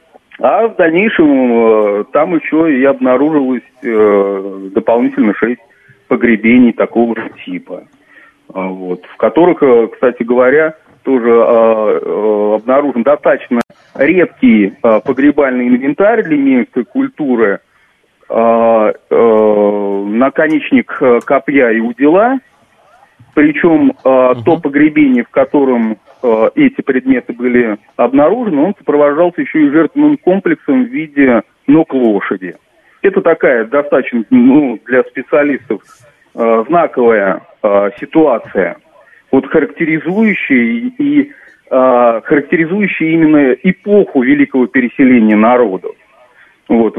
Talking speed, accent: 90 wpm, native